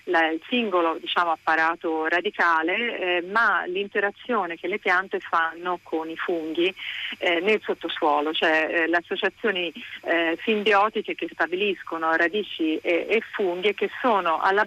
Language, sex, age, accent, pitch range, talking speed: Italian, female, 40-59, native, 160-200 Hz, 145 wpm